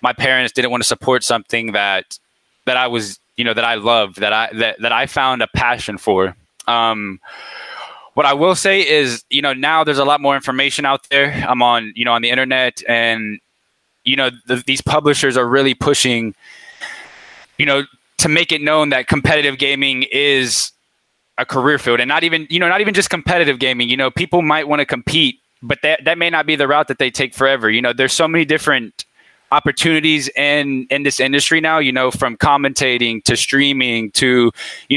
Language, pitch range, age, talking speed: English, 125-150 Hz, 10-29, 205 wpm